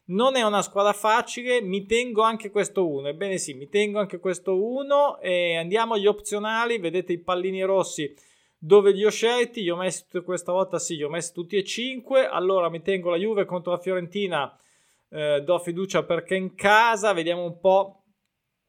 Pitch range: 155-200 Hz